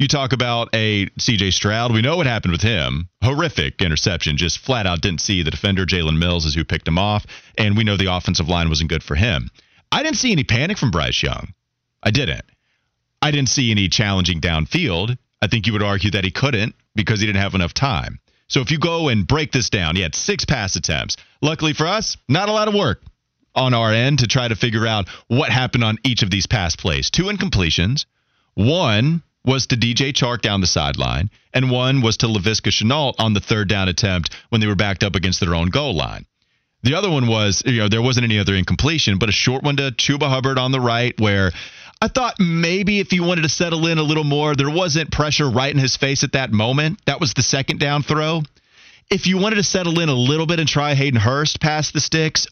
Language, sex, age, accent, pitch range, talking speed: English, male, 30-49, American, 100-145 Hz, 230 wpm